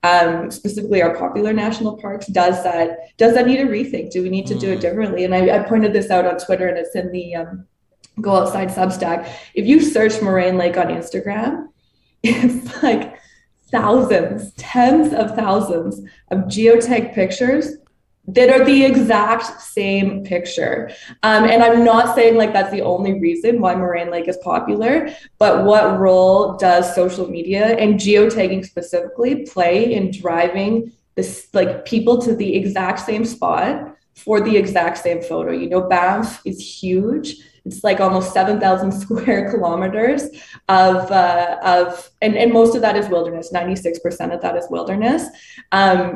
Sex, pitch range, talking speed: female, 180-225 Hz, 160 wpm